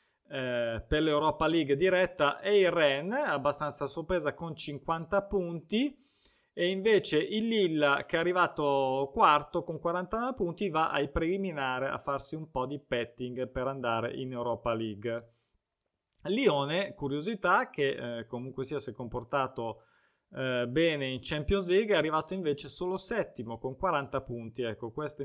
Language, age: Italian, 20-39